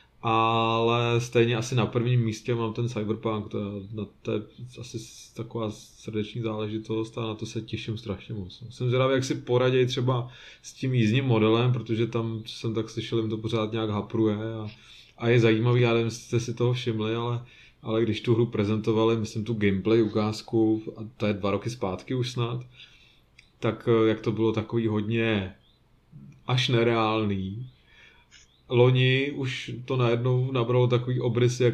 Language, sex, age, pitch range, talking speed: Czech, male, 20-39, 110-125 Hz, 165 wpm